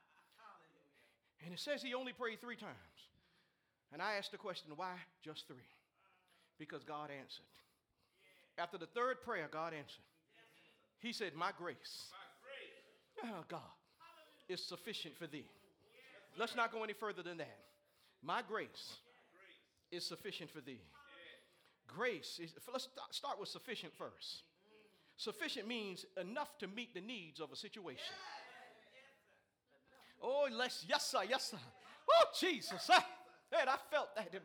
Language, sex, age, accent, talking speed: English, male, 40-59, American, 135 wpm